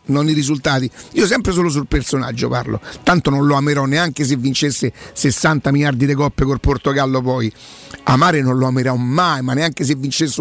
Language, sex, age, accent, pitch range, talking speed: Italian, male, 50-69, native, 135-170 Hz, 185 wpm